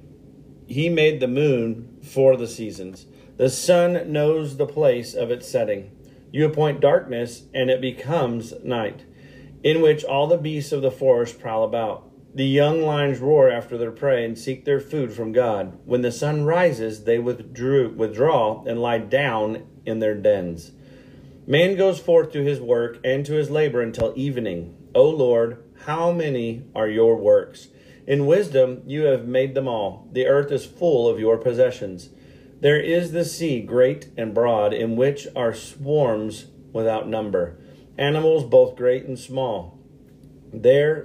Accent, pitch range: American, 120-150 Hz